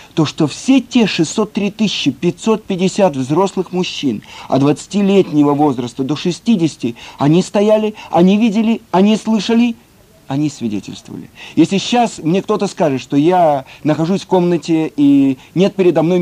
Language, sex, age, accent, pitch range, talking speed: Russian, male, 50-69, native, 145-190 Hz, 135 wpm